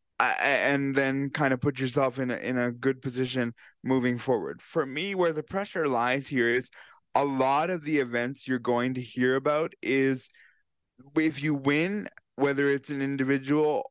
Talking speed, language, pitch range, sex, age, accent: 170 wpm, English, 130-155 Hz, male, 20-39, American